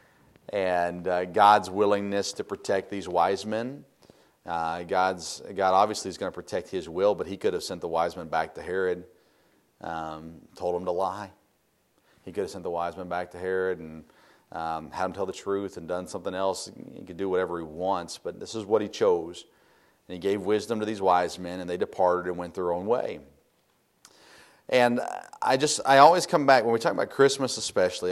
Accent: American